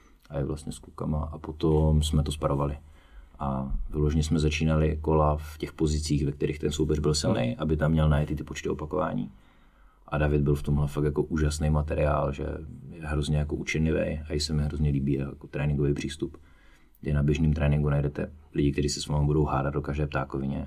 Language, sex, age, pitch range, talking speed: Czech, male, 30-49, 70-75 Hz, 200 wpm